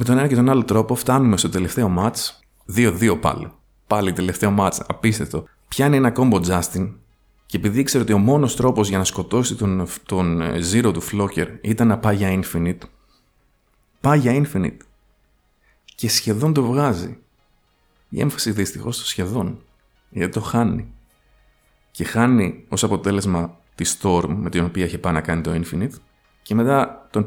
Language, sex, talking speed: Greek, male, 165 wpm